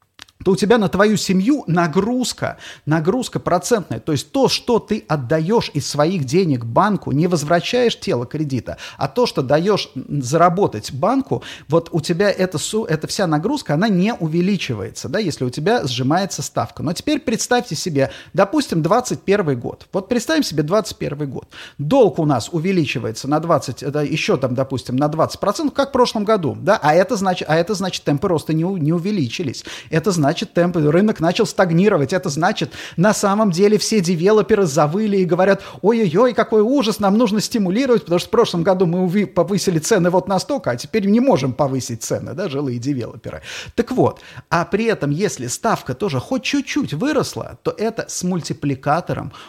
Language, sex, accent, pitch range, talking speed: Russian, male, native, 145-205 Hz, 165 wpm